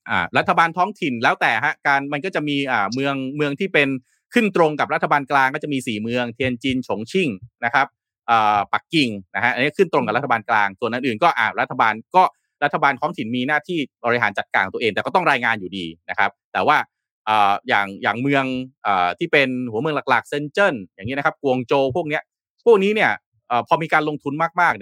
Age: 30-49